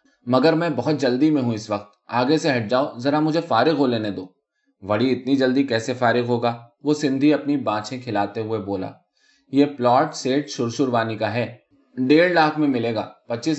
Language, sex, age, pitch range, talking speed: Urdu, male, 20-39, 110-145 Hz, 185 wpm